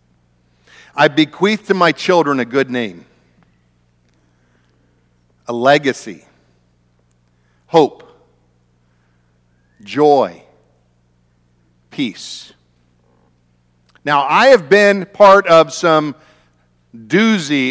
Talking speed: 70 wpm